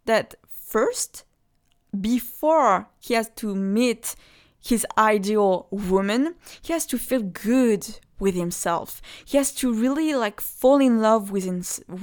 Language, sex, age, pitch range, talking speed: English, female, 20-39, 200-250 Hz, 135 wpm